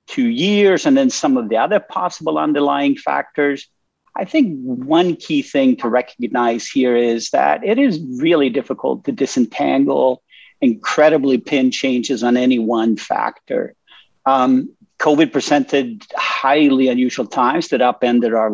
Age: 50-69